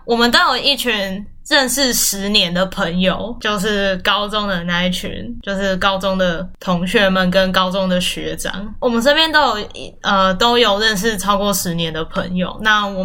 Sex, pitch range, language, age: female, 190-235 Hz, Chinese, 10-29